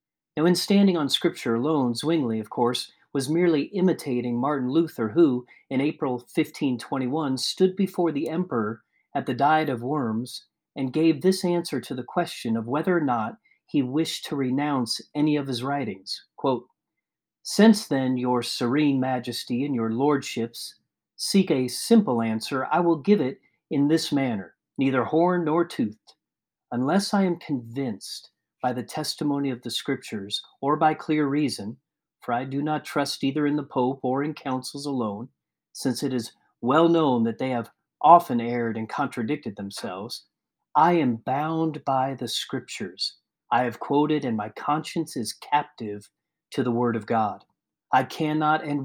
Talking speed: 160 wpm